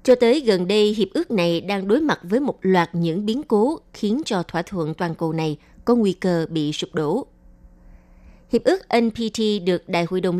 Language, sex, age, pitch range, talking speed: Vietnamese, female, 20-39, 170-220 Hz, 210 wpm